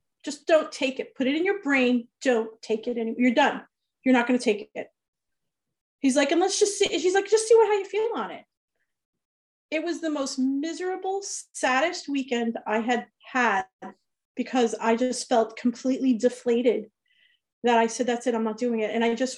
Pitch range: 230-285 Hz